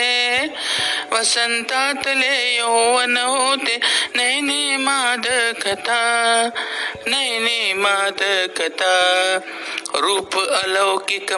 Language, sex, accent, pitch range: Marathi, male, native, 195-245 Hz